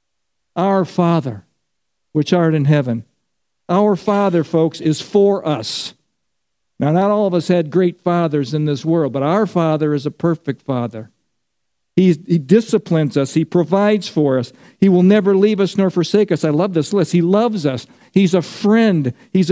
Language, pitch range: English, 155-205 Hz